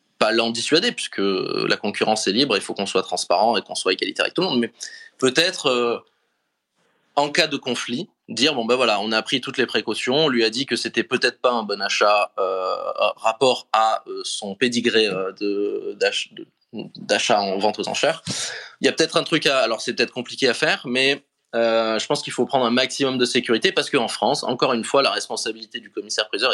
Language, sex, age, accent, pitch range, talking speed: English, male, 20-39, French, 110-135 Hz, 230 wpm